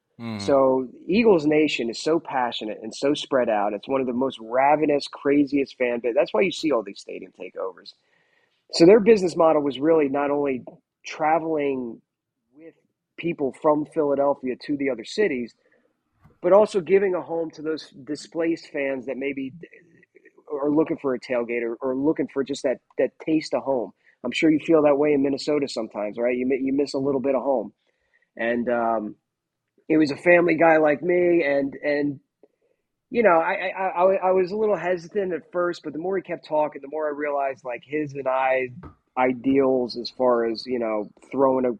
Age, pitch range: 30-49, 130-160 Hz